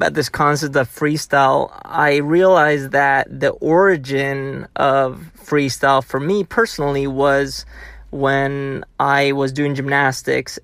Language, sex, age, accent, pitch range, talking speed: English, male, 30-49, American, 135-150 Hz, 120 wpm